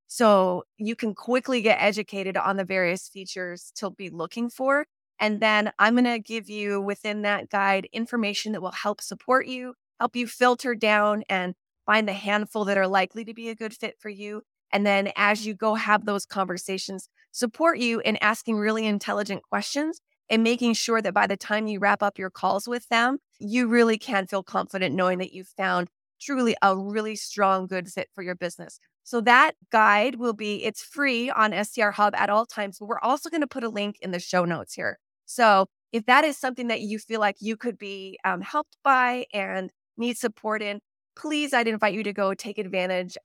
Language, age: English, 20-39